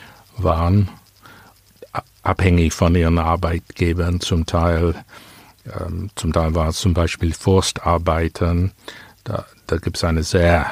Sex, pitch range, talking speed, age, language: male, 85-100 Hz, 120 wpm, 60-79, German